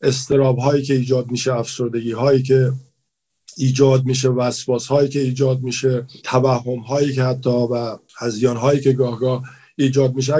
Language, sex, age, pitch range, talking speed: Persian, male, 50-69, 130-145 Hz, 150 wpm